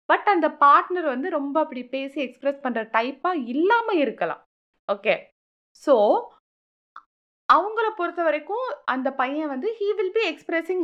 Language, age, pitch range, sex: Tamil, 20-39, 240-325 Hz, female